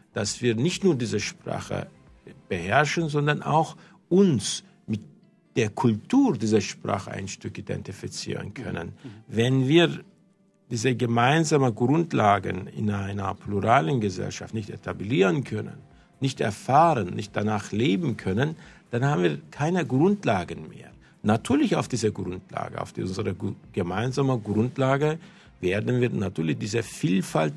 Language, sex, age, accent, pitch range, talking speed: German, male, 50-69, German, 105-150 Hz, 120 wpm